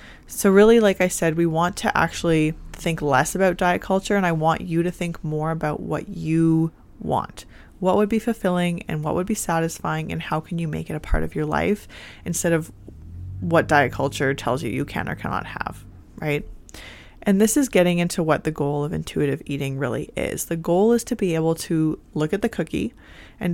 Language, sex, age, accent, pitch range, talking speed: English, female, 20-39, American, 150-185 Hz, 210 wpm